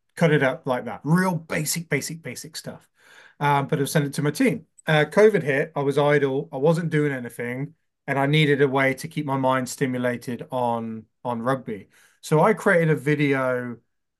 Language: English